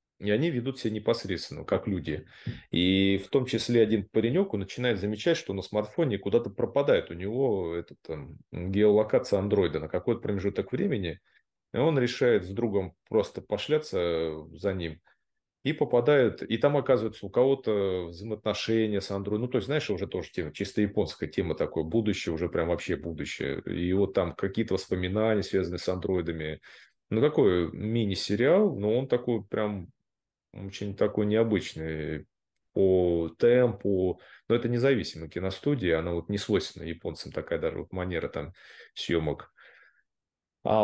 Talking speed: 145 wpm